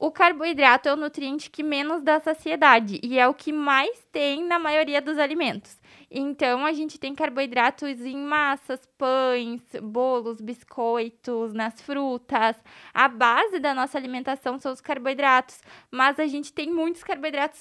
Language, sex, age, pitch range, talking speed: Portuguese, female, 20-39, 240-295 Hz, 155 wpm